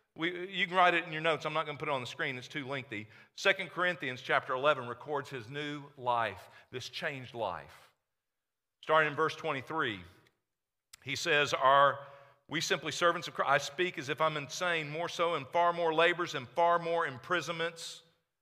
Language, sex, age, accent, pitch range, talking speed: English, male, 50-69, American, 155-200 Hz, 190 wpm